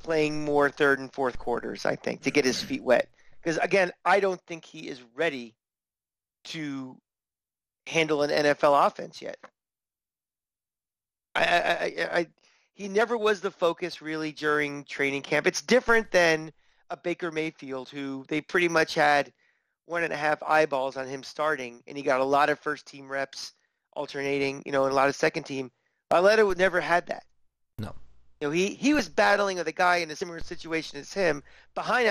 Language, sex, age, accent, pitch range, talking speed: English, male, 30-49, American, 140-175 Hz, 185 wpm